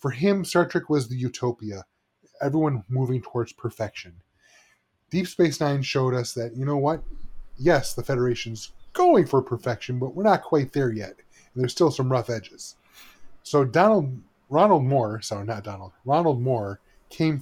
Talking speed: 160 wpm